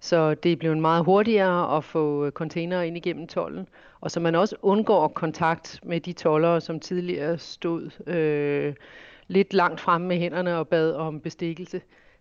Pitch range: 155-180 Hz